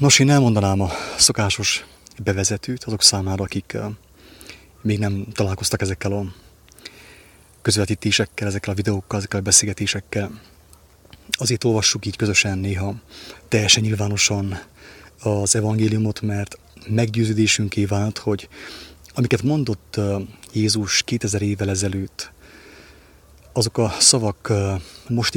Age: 30-49